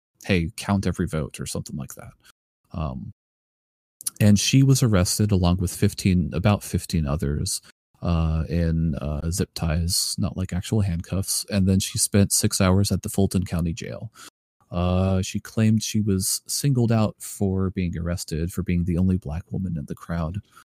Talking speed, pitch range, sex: 170 wpm, 85-110 Hz, male